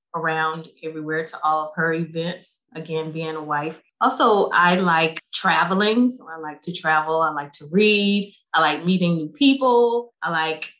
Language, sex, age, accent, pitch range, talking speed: English, female, 20-39, American, 160-210 Hz, 170 wpm